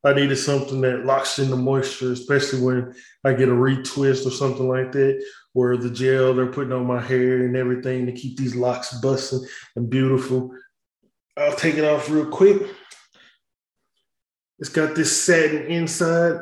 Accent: American